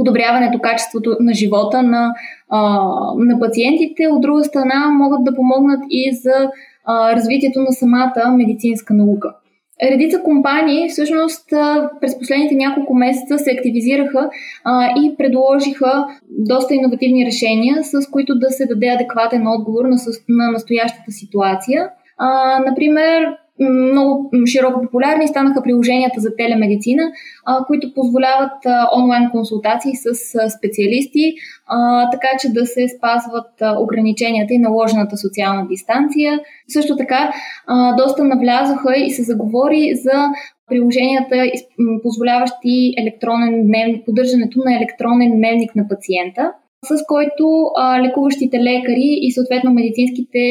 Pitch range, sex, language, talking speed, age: 235-275 Hz, female, Bulgarian, 115 wpm, 20-39